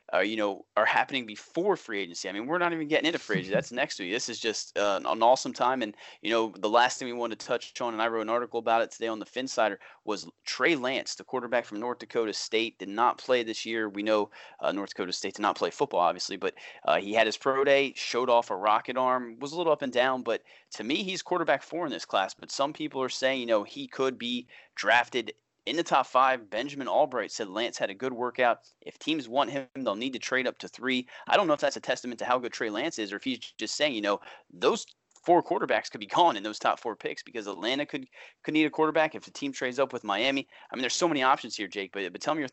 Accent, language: American, English